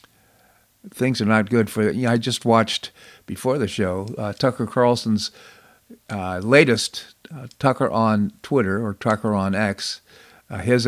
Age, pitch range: 50-69, 105-125 Hz